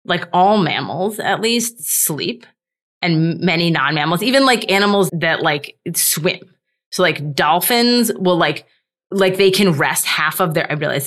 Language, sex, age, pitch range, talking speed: English, female, 20-39, 165-210 Hz, 155 wpm